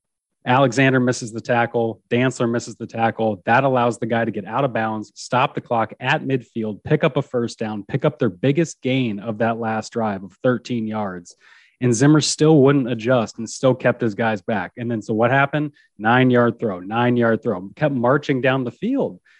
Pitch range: 115-140 Hz